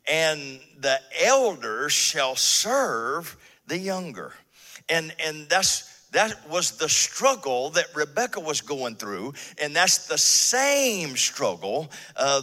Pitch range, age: 125-180 Hz, 50-69